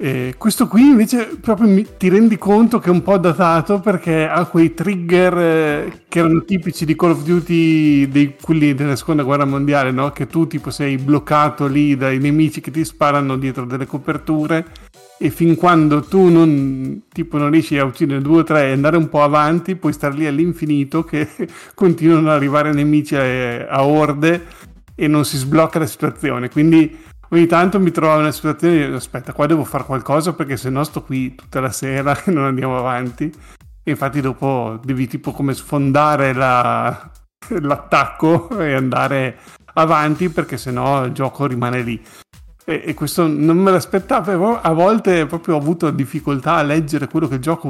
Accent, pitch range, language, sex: native, 140-165 Hz, Italian, male